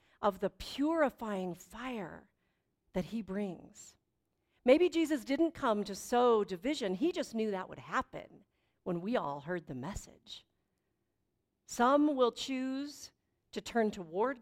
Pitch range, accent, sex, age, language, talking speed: 180-240 Hz, American, female, 50-69, English, 135 wpm